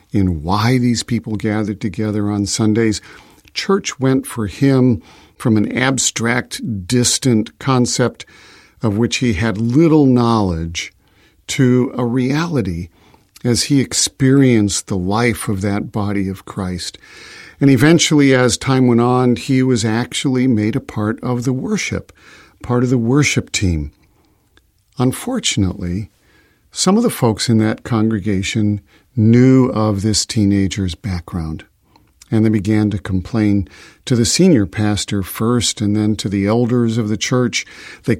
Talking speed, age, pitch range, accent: 140 wpm, 50-69, 105-130 Hz, American